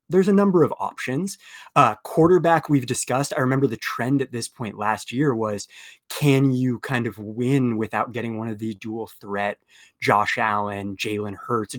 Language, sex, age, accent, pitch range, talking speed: English, male, 20-39, American, 110-140 Hz, 180 wpm